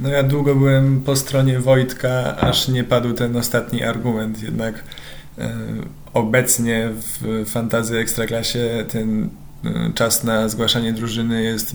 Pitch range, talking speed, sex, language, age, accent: 115-120 Hz, 125 wpm, male, Polish, 20-39, native